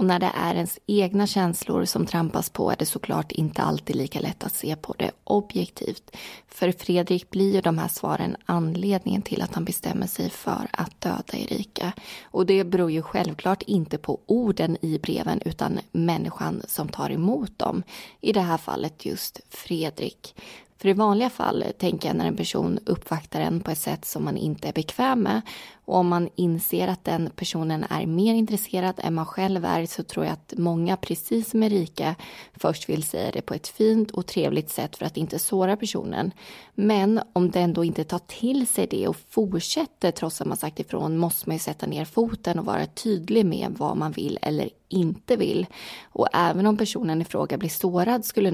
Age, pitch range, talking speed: 20-39, 170-210 Hz, 195 wpm